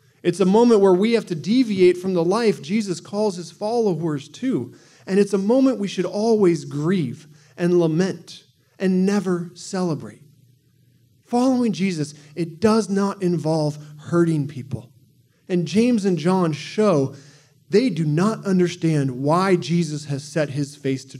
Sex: male